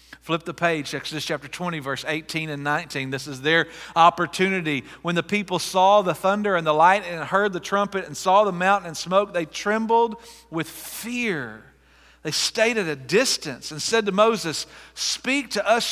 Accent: American